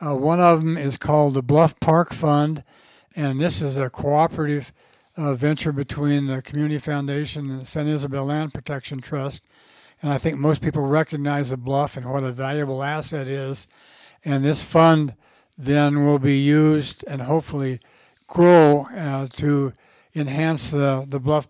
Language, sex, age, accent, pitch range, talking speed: English, male, 60-79, American, 140-155 Hz, 165 wpm